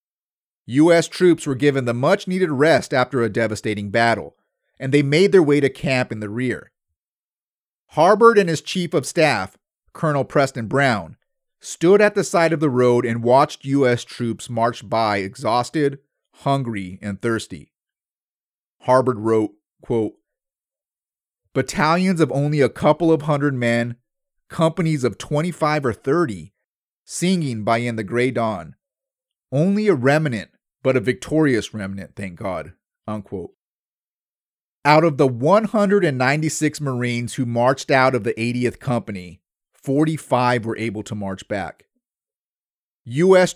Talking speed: 135 wpm